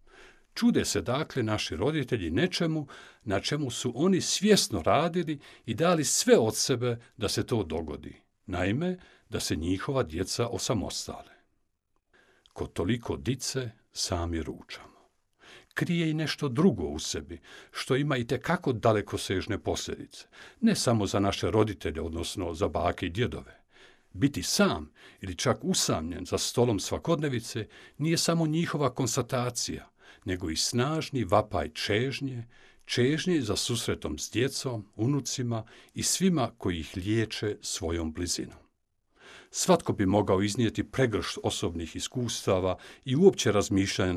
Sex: male